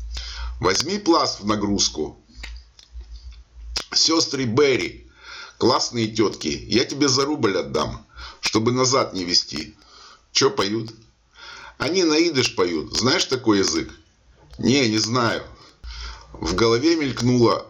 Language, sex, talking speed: Russian, male, 105 wpm